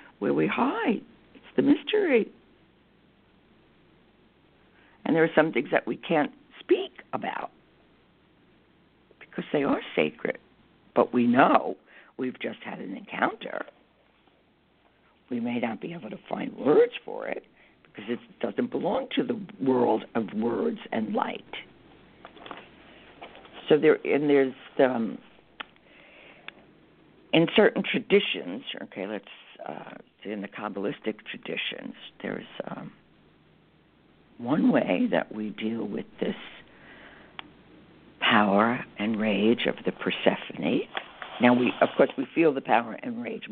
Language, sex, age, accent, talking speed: English, female, 60-79, American, 125 wpm